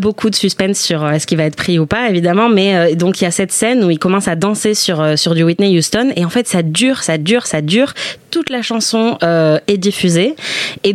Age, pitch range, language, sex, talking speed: 20-39, 170-200 Hz, French, female, 250 wpm